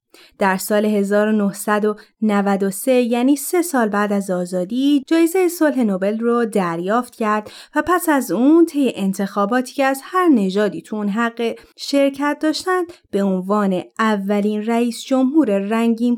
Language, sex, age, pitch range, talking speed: Persian, female, 30-49, 200-260 Hz, 130 wpm